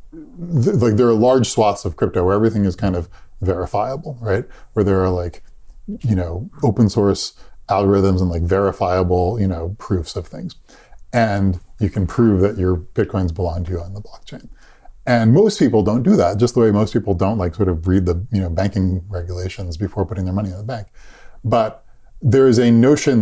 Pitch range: 95-115 Hz